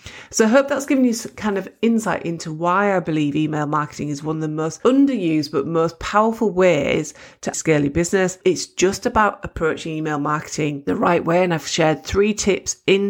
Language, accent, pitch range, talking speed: English, British, 150-190 Hz, 205 wpm